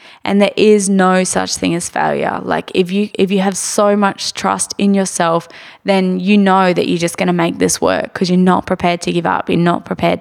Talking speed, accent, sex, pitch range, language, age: 235 wpm, Australian, female, 175-190 Hz, English, 10-29